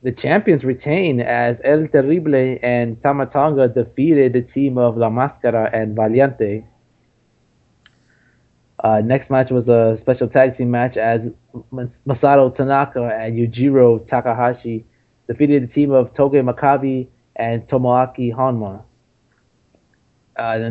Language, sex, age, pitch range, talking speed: English, male, 20-39, 120-140 Hz, 125 wpm